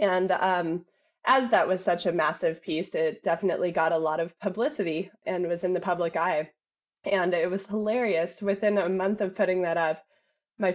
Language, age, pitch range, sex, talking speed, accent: English, 20-39, 175-210 Hz, female, 190 wpm, American